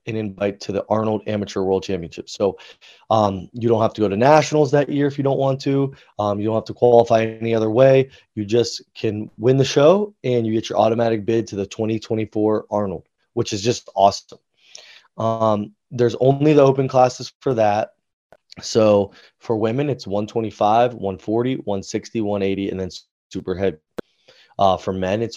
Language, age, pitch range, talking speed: English, 20-39, 105-125 Hz, 180 wpm